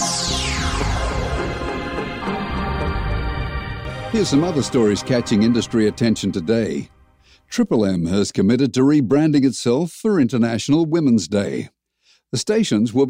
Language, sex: English, male